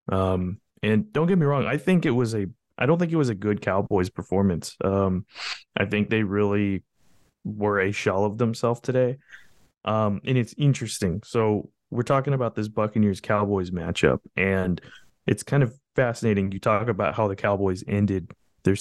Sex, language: male, English